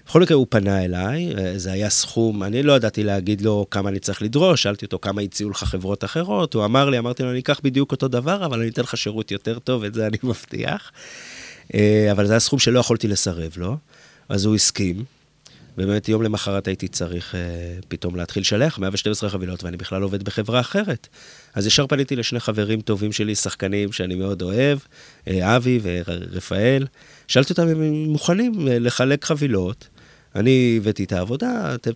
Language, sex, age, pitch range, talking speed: Hebrew, male, 30-49, 95-130 Hz, 175 wpm